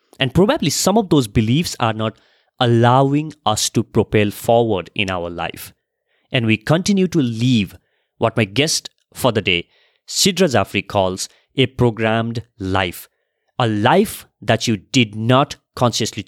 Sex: male